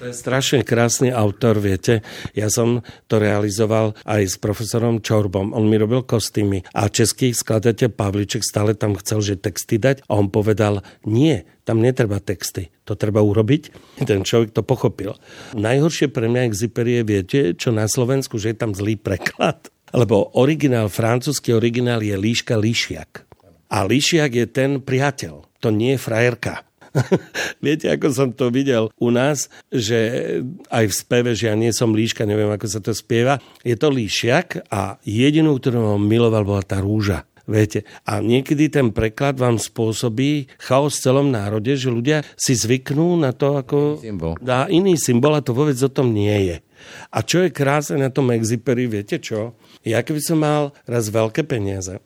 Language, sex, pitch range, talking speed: Slovak, male, 105-130 Hz, 170 wpm